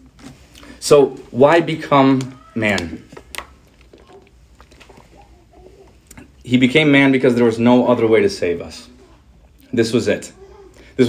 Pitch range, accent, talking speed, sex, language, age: 115-145 Hz, American, 110 wpm, male, English, 30-49